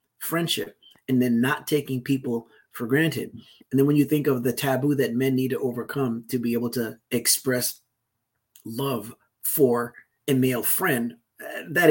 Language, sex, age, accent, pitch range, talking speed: English, male, 30-49, American, 125-145 Hz, 160 wpm